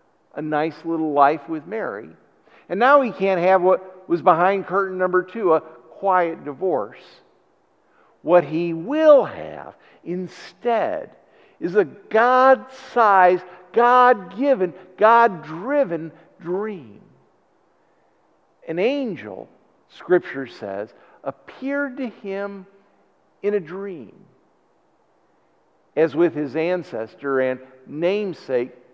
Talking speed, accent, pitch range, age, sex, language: 95 wpm, American, 170-230 Hz, 50-69, male, English